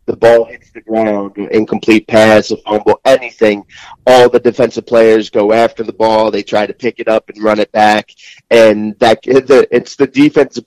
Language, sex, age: English, male, 30-49